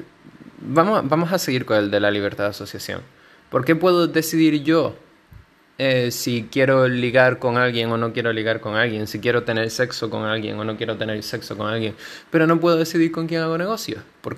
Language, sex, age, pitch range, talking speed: Spanish, male, 20-39, 105-130 Hz, 215 wpm